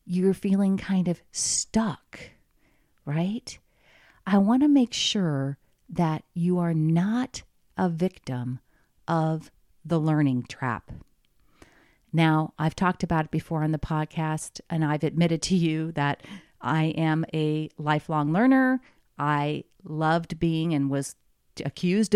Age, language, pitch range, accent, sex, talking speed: 40-59, English, 155-215 Hz, American, female, 125 wpm